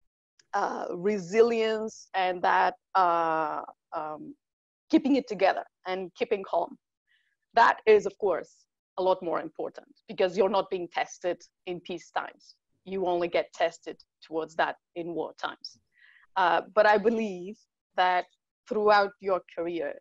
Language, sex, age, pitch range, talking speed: English, female, 30-49, 180-230 Hz, 135 wpm